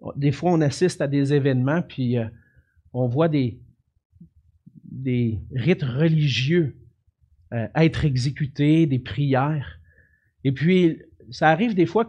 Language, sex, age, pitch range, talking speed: French, male, 50-69, 120-180 Hz, 130 wpm